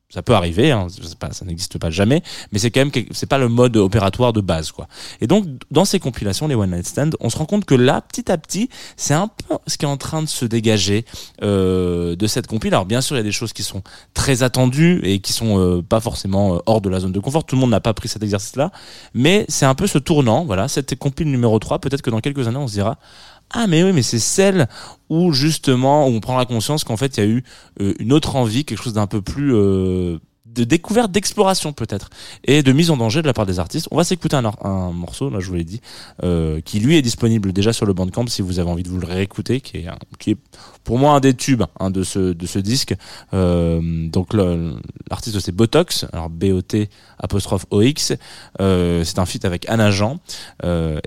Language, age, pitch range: French, 20-39, 95-140 Hz